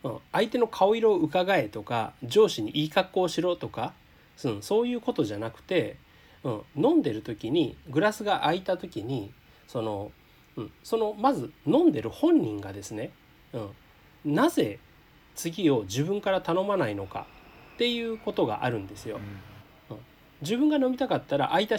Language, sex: Japanese, male